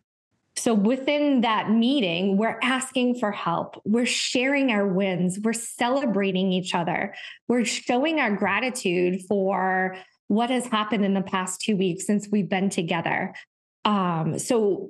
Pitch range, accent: 195-255 Hz, American